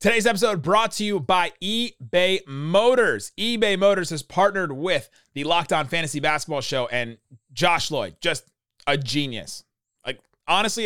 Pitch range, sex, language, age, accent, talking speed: 145-195 Hz, male, English, 30-49, American, 150 wpm